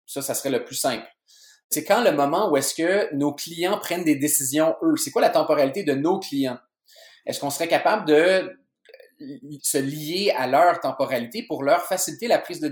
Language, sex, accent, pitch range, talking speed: French, male, Canadian, 135-190 Hz, 200 wpm